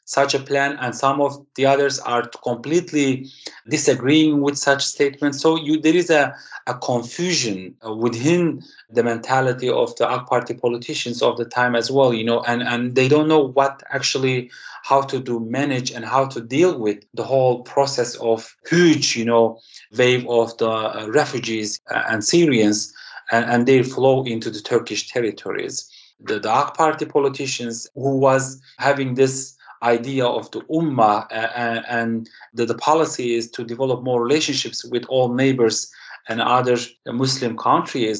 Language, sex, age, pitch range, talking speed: English, male, 30-49, 120-140 Hz, 160 wpm